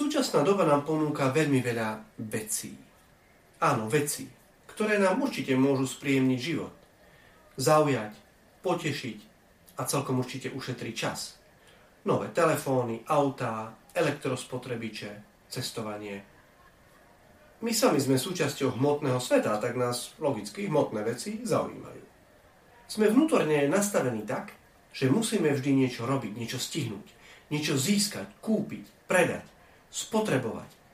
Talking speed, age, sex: 105 wpm, 40-59, male